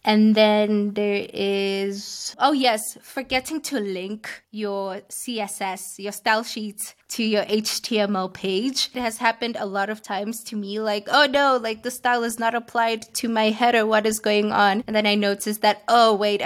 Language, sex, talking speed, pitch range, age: English, female, 180 wpm, 205-235 Hz, 20-39